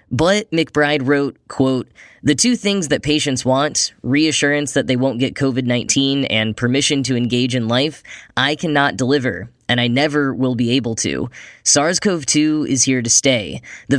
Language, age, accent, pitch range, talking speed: English, 10-29, American, 120-150 Hz, 165 wpm